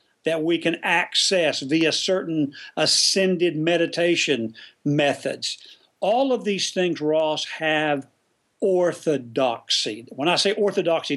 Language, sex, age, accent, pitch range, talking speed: English, male, 50-69, American, 135-195 Hz, 105 wpm